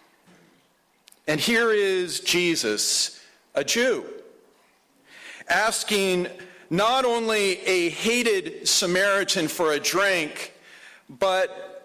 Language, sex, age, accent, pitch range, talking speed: English, male, 50-69, American, 160-205 Hz, 80 wpm